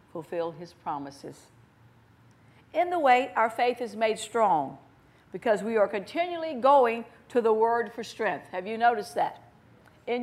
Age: 50-69